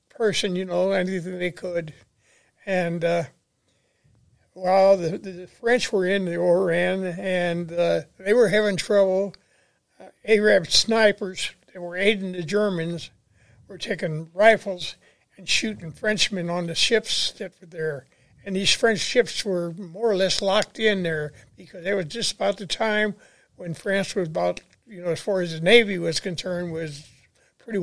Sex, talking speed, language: male, 160 wpm, English